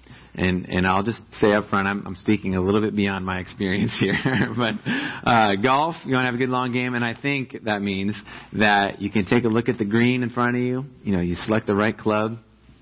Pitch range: 100-125 Hz